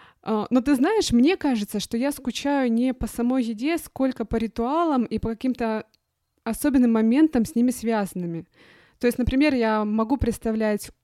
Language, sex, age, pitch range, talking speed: Russian, female, 20-39, 200-245 Hz, 160 wpm